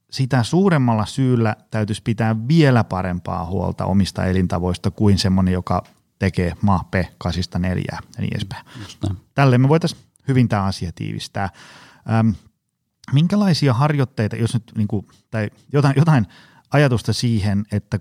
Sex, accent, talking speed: male, native, 130 wpm